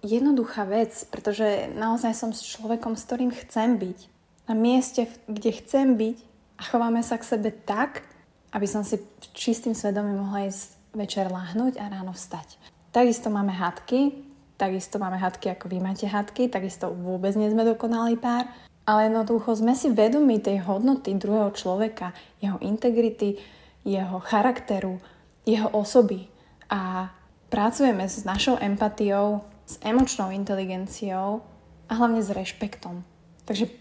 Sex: female